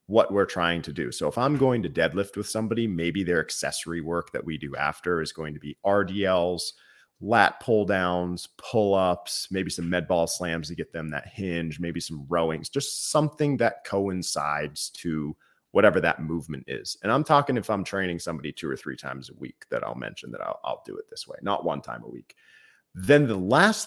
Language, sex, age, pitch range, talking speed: English, male, 30-49, 85-130 Hz, 210 wpm